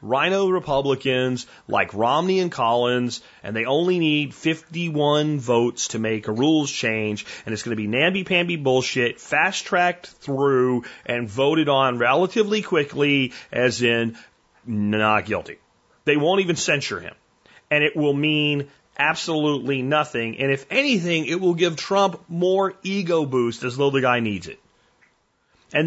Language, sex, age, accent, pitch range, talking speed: German, male, 30-49, American, 135-190 Hz, 145 wpm